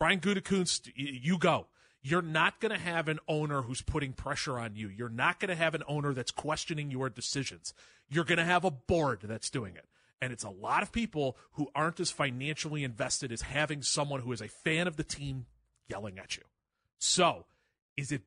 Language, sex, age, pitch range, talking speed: English, male, 30-49, 140-185 Hz, 205 wpm